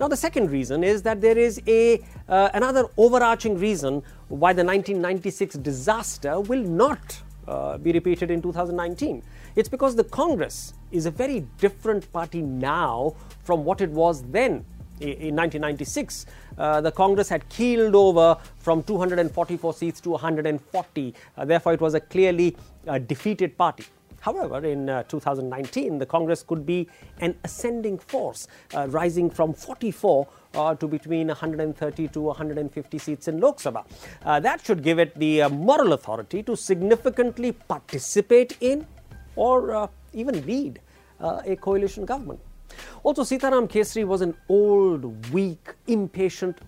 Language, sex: English, male